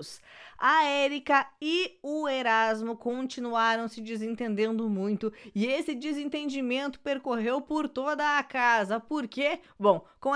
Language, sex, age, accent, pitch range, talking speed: Portuguese, female, 20-39, Brazilian, 240-300 Hz, 120 wpm